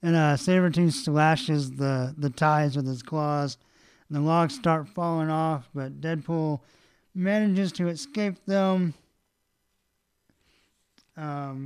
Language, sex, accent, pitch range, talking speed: English, male, American, 140-180 Hz, 120 wpm